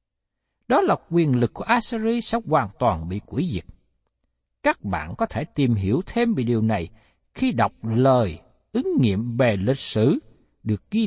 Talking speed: 175 wpm